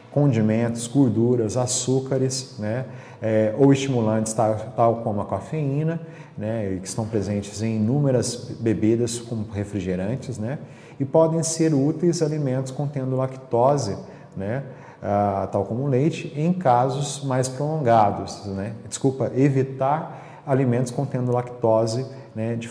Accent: Brazilian